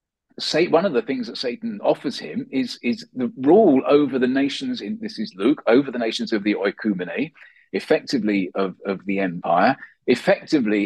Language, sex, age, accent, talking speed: English, male, 40-59, British, 170 wpm